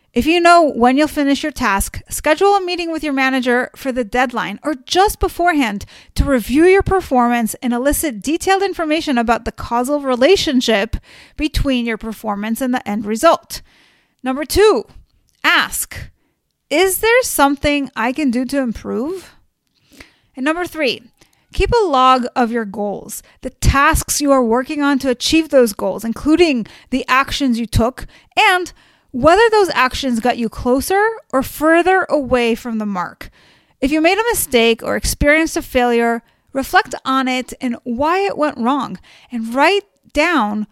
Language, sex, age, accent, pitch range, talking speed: English, female, 30-49, American, 235-320 Hz, 160 wpm